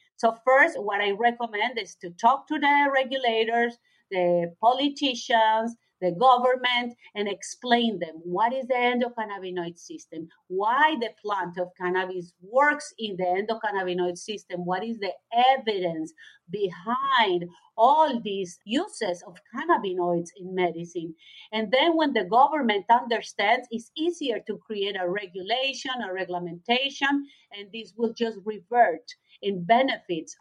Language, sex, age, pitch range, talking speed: English, female, 40-59, 180-245 Hz, 130 wpm